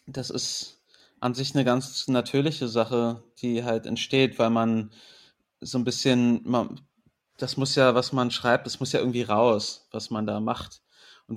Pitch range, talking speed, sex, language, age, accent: 115-130 Hz, 175 wpm, male, German, 30-49, German